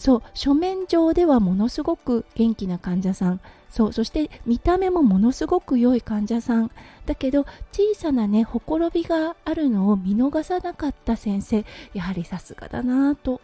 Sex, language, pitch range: female, Japanese, 215-290 Hz